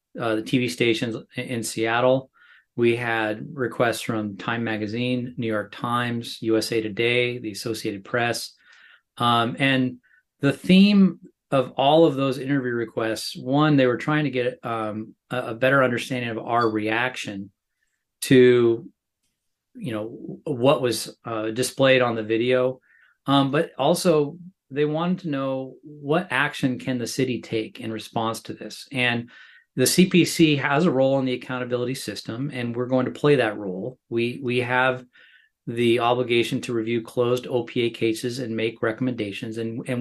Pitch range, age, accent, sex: 115-135 Hz, 30-49, American, male